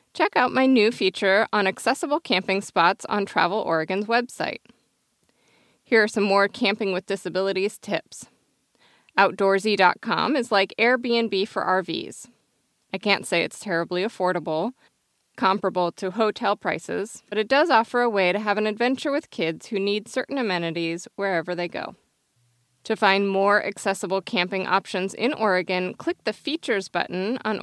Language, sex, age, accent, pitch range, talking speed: English, female, 20-39, American, 185-230 Hz, 150 wpm